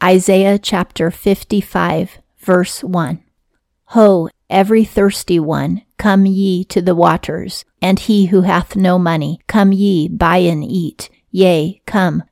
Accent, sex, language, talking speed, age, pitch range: American, female, English, 130 wpm, 40-59, 170-195 Hz